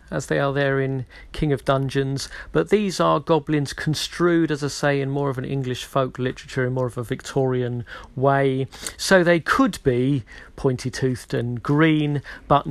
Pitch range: 120-145 Hz